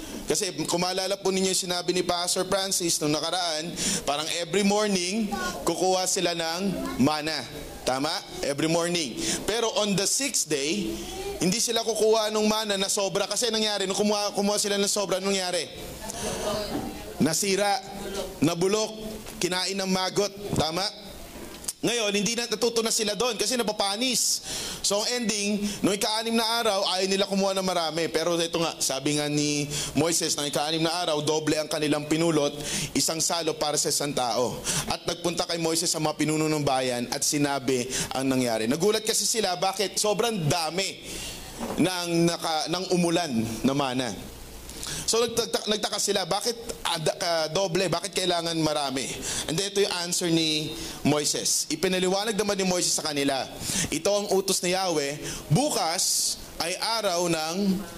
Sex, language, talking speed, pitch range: male, Filipino, 150 wpm, 160-200 Hz